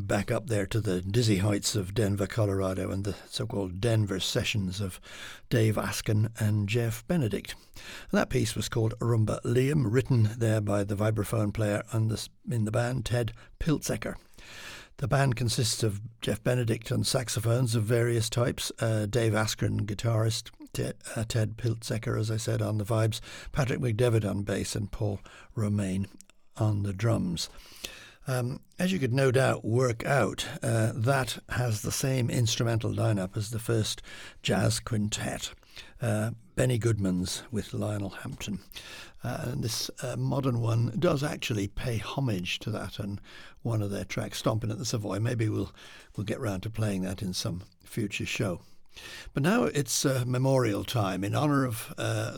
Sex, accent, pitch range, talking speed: male, British, 100-120 Hz, 160 wpm